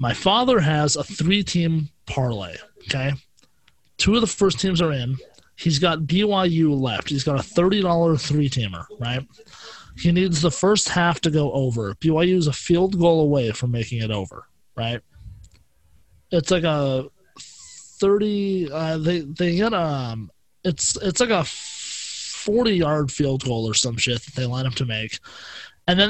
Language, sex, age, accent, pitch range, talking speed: English, male, 30-49, American, 120-175 Hz, 160 wpm